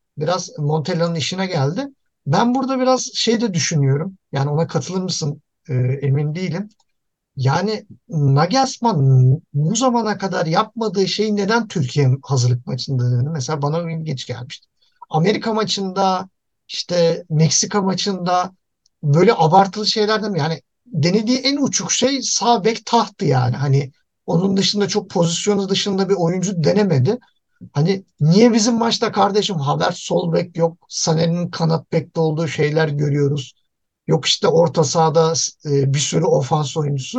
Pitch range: 140-205 Hz